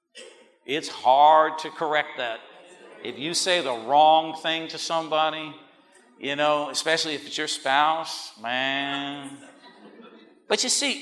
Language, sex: English, male